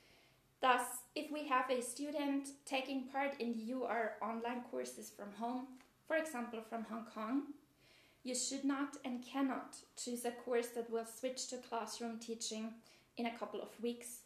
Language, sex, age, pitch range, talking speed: English, female, 20-39, 220-260 Hz, 165 wpm